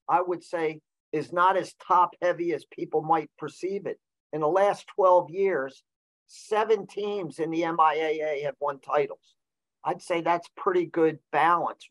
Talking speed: 160 wpm